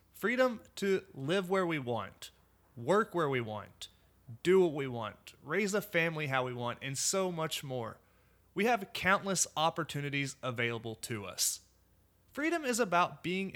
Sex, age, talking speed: male, 30-49, 155 wpm